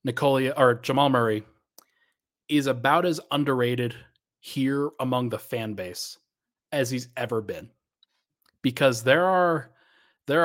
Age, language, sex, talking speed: 30-49, English, male, 120 wpm